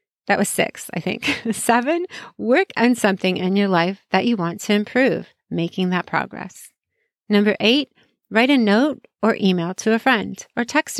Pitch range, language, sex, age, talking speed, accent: 200-255 Hz, English, female, 30-49, 175 wpm, American